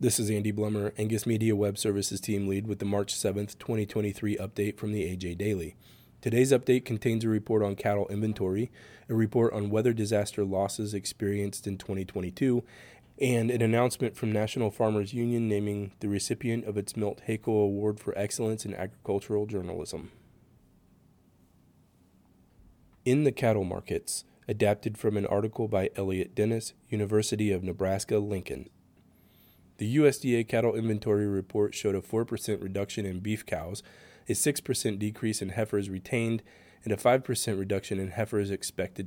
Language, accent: English, American